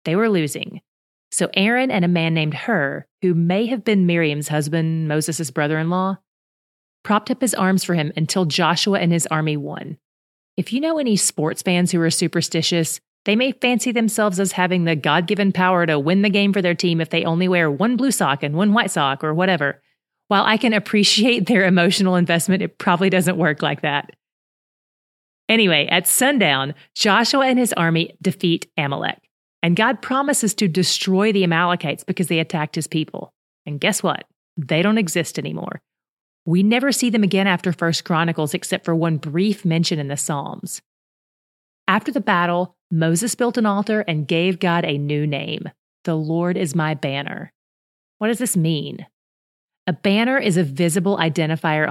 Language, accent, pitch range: English, American, 165-205 Hz